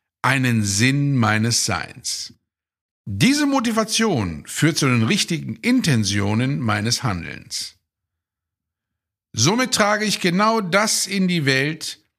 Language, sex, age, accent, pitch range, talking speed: German, male, 50-69, German, 110-180 Hz, 105 wpm